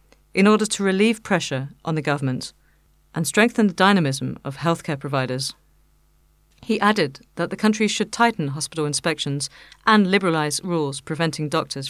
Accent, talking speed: British, 145 wpm